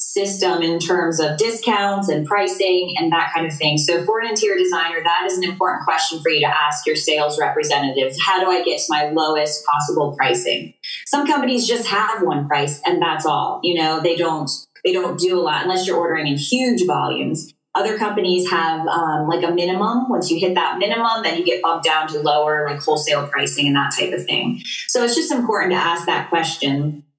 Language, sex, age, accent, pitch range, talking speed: English, female, 20-39, American, 155-195 Hz, 215 wpm